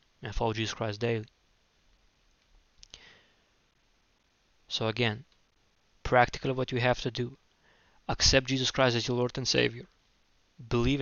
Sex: male